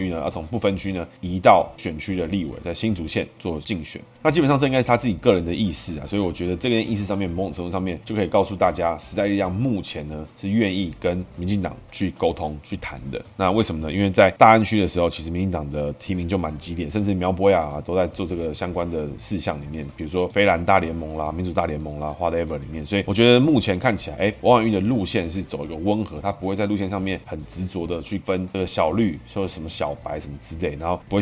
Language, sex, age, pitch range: Chinese, male, 20-39, 85-105 Hz